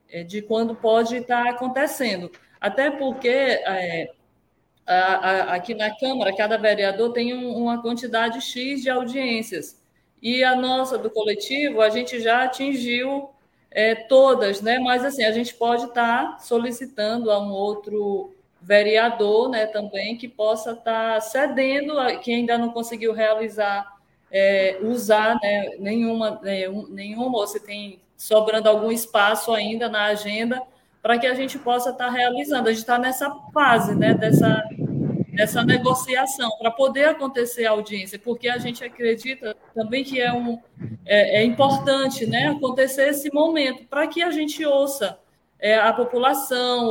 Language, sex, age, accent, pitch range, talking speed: Portuguese, female, 20-39, Brazilian, 215-255 Hz, 135 wpm